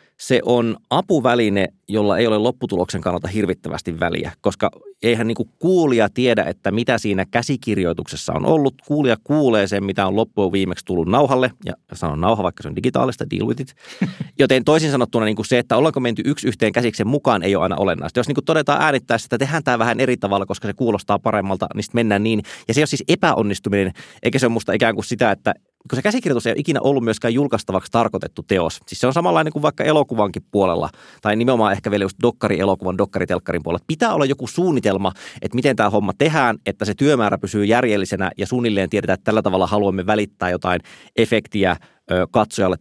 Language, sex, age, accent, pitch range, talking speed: Finnish, male, 30-49, native, 95-120 Hz, 190 wpm